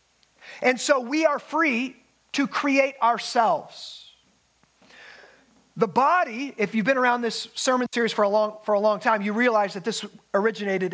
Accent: American